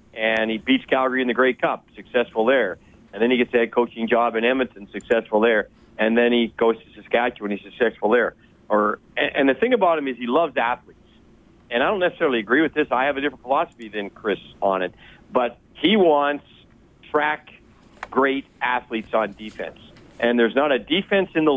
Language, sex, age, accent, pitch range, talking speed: English, male, 40-59, American, 115-155 Hz, 205 wpm